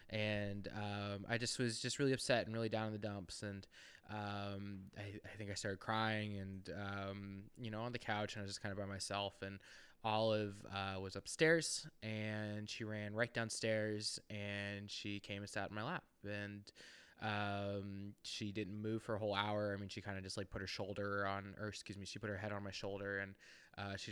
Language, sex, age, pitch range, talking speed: English, male, 20-39, 100-115 Hz, 220 wpm